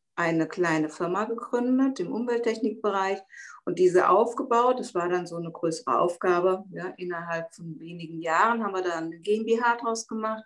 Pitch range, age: 175-230 Hz, 50-69